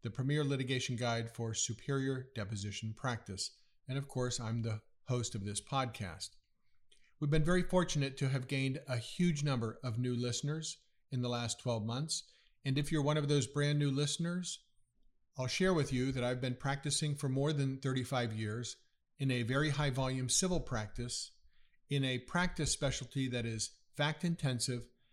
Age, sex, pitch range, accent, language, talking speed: 50-69, male, 115-145 Hz, American, English, 170 wpm